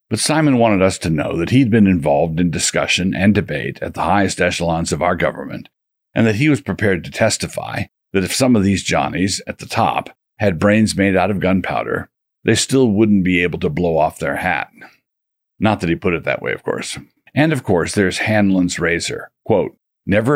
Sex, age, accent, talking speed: male, 50-69, American, 205 wpm